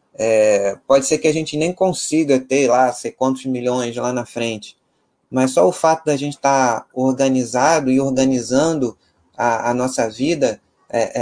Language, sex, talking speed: Portuguese, male, 170 wpm